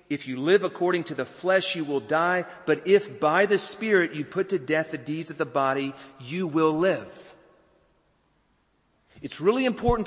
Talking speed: 180 wpm